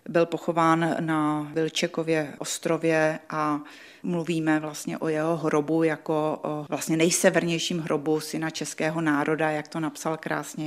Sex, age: female, 30-49